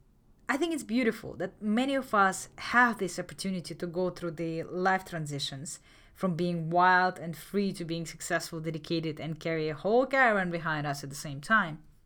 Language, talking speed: English, 185 wpm